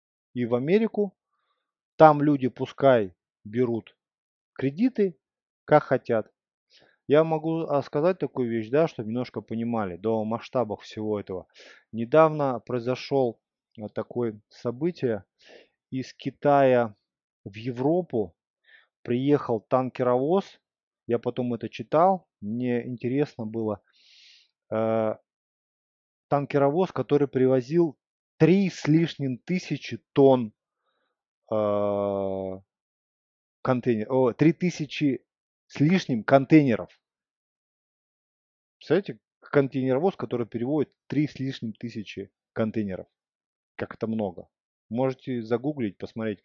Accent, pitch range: native, 110-155 Hz